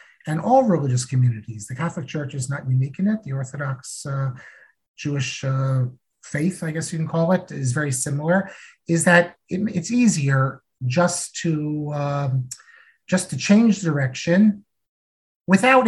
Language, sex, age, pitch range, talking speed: English, male, 50-69, 135-190 Hz, 150 wpm